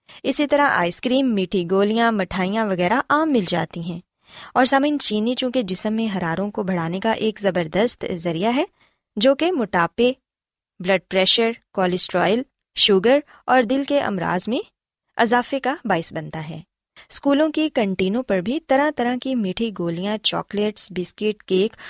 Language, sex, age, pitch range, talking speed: Urdu, female, 20-39, 190-260 Hz, 150 wpm